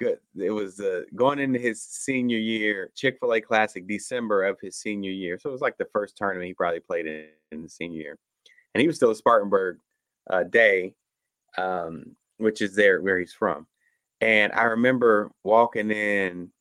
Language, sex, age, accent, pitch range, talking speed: English, male, 30-49, American, 105-135 Hz, 180 wpm